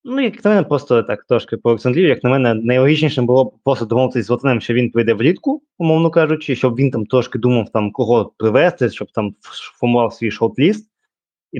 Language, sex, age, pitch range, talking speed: Ukrainian, male, 20-39, 105-130 Hz, 200 wpm